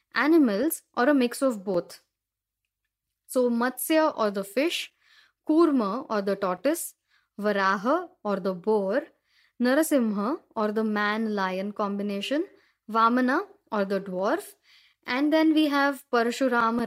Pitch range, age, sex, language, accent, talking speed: 215-300 Hz, 10-29, female, Marathi, native, 120 wpm